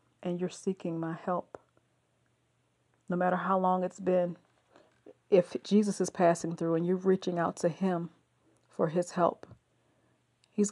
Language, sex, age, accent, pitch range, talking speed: English, female, 40-59, American, 175-195 Hz, 145 wpm